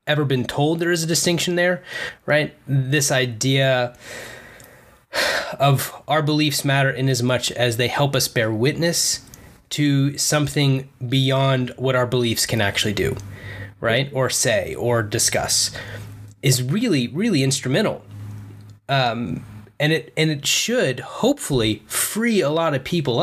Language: English